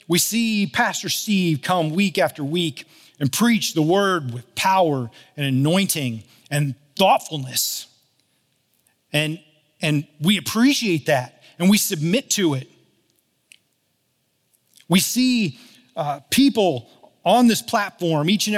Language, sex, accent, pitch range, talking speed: English, male, American, 140-200 Hz, 120 wpm